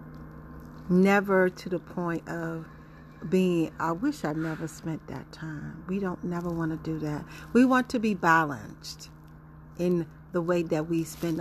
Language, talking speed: English, 165 wpm